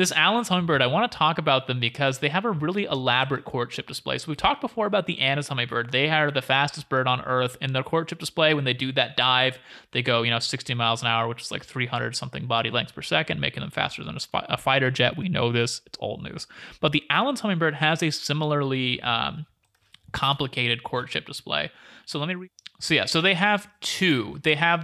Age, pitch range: 30-49, 130-170 Hz